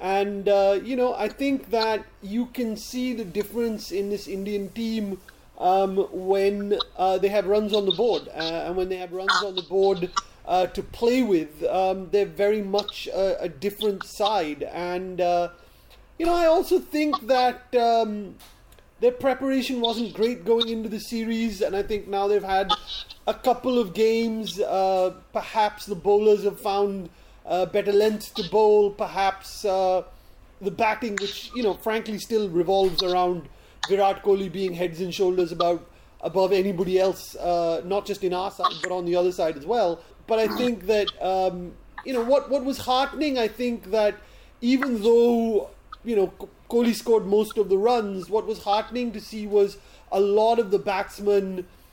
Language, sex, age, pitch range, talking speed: English, male, 30-49, 190-235 Hz, 175 wpm